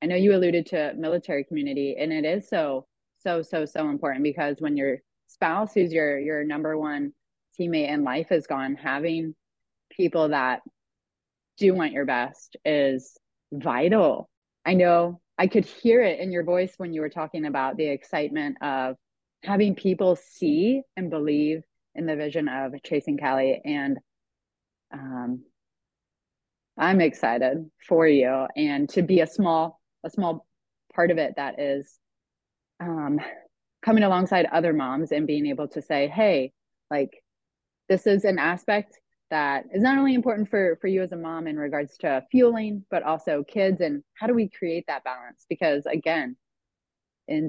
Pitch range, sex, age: 145-185 Hz, female, 30-49